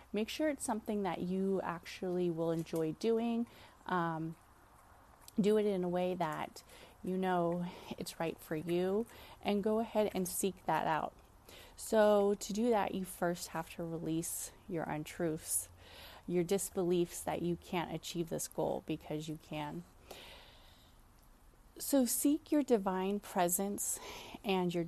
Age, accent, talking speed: 30-49, American, 140 wpm